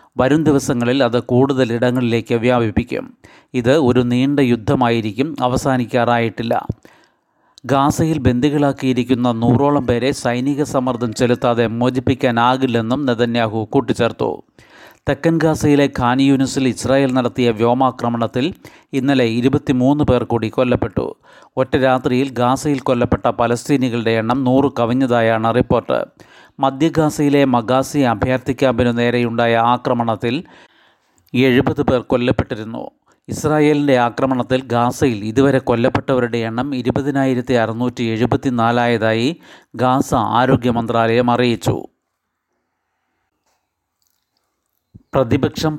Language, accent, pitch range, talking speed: Malayalam, native, 120-135 Hz, 85 wpm